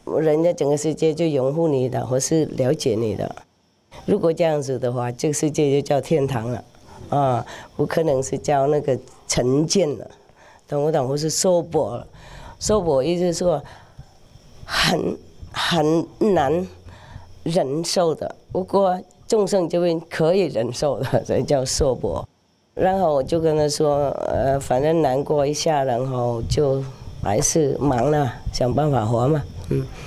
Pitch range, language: 125-165 Hz, English